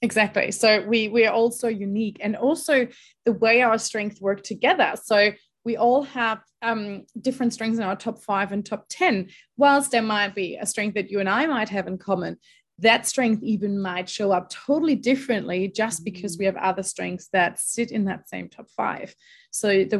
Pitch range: 190-230 Hz